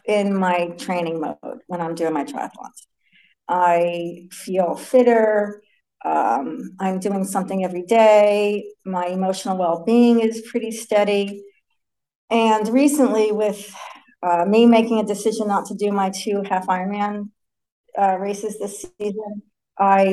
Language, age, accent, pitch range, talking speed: English, 50-69, American, 185-220 Hz, 130 wpm